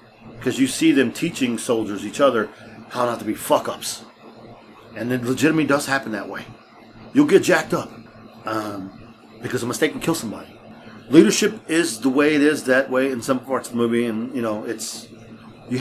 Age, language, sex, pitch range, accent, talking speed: 40-59, English, male, 110-125 Hz, American, 185 wpm